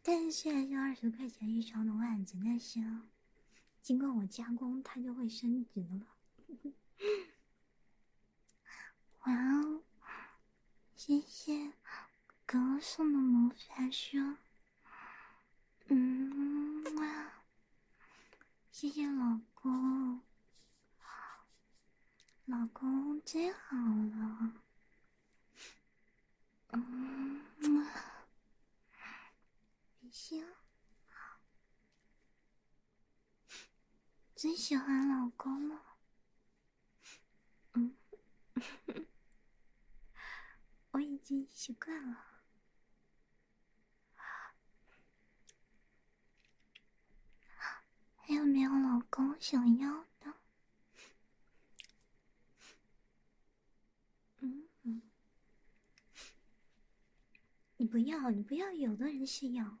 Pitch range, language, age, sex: 235-290 Hz, English, 20-39, male